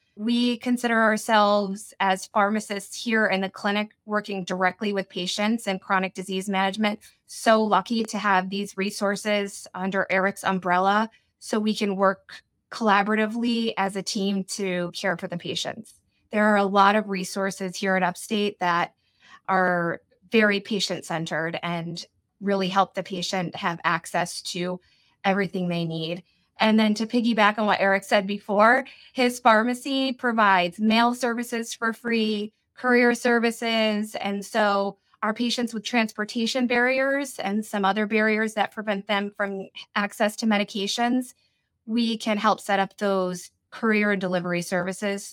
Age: 20-39